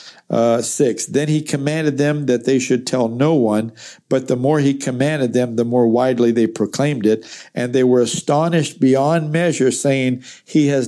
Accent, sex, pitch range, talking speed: American, male, 120-145 Hz, 180 wpm